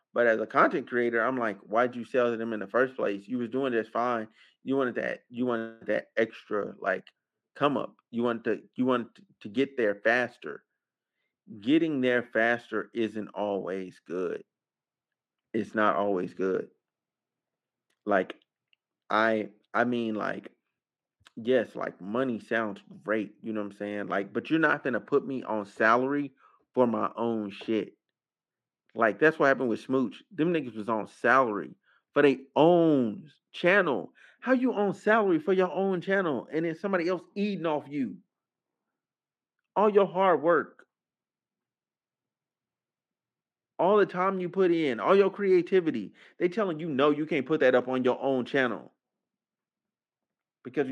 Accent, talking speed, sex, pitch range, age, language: American, 160 wpm, male, 115-170 Hz, 30-49, English